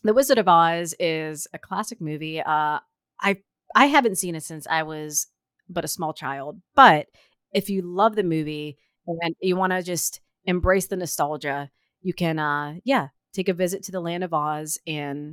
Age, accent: 30-49, American